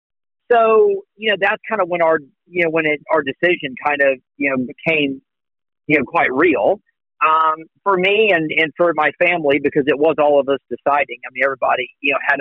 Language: English